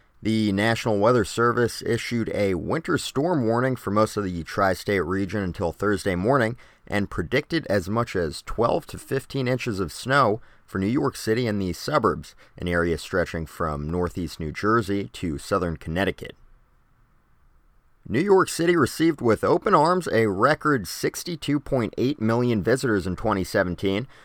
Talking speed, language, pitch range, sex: 150 wpm, English, 100-130 Hz, male